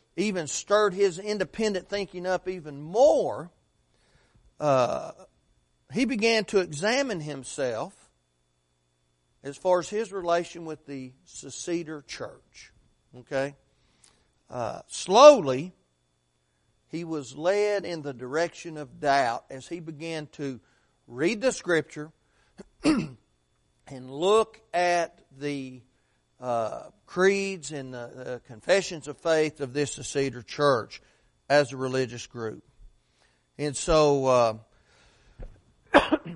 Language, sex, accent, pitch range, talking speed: English, male, American, 125-185 Hz, 105 wpm